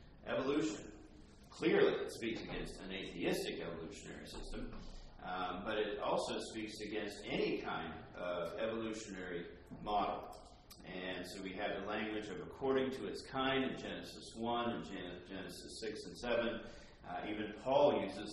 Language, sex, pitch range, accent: English, male, 100-130 Hz, American